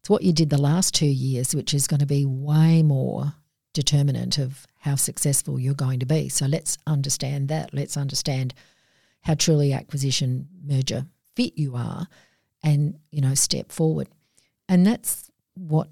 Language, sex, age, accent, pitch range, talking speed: English, female, 50-69, Australian, 135-155 Hz, 165 wpm